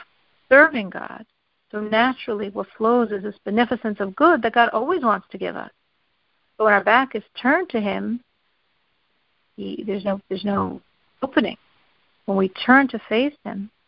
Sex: female